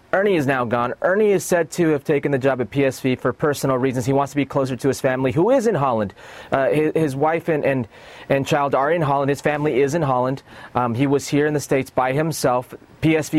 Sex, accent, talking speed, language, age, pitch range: male, American, 245 wpm, English, 30-49, 120-155 Hz